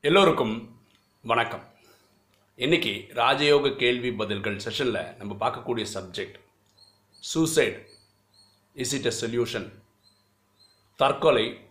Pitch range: 100-120 Hz